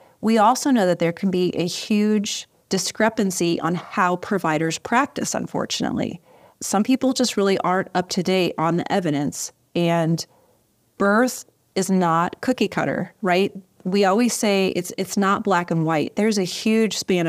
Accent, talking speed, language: American, 160 wpm, English